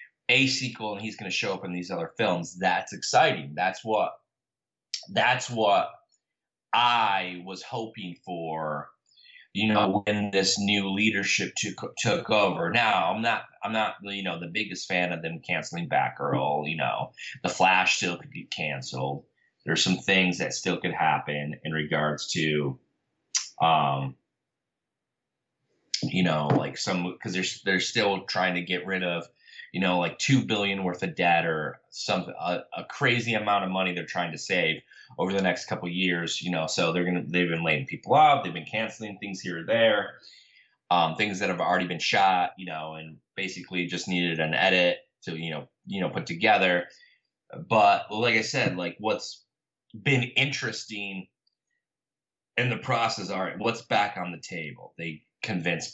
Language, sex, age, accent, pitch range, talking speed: English, male, 30-49, American, 85-100 Hz, 175 wpm